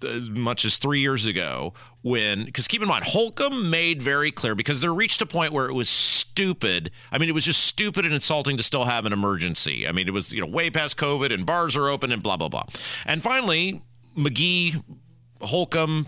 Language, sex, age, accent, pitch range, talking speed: English, male, 40-59, American, 125-190 Hz, 215 wpm